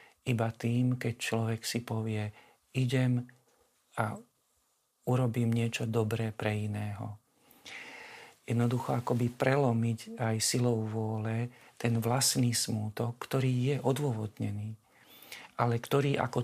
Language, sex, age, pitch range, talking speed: Slovak, male, 50-69, 115-125 Hz, 100 wpm